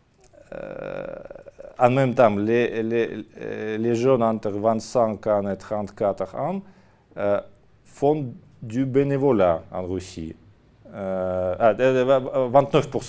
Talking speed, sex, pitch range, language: 95 wpm, male, 100-125 Hz, French